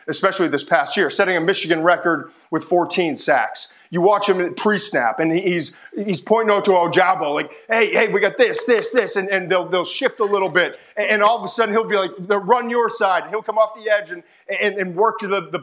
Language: English